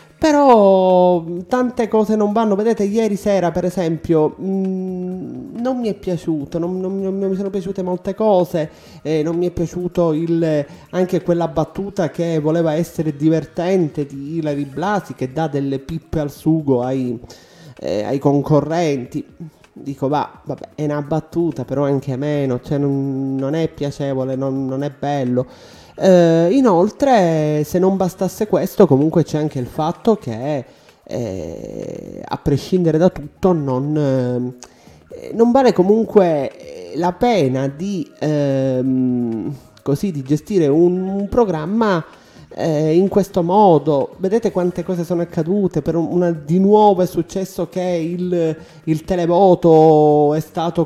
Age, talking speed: 30-49, 140 wpm